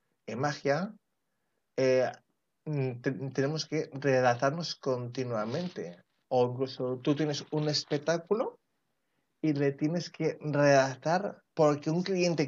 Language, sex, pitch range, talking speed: Spanish, male, 135-165 Hz, 100 wpm